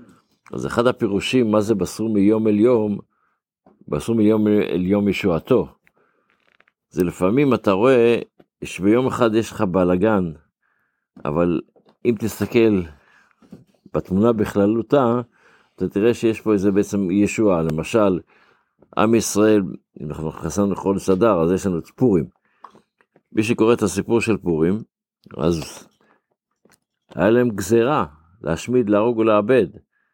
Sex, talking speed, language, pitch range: male, 120 wpm, Hebrew, 100-120 Hz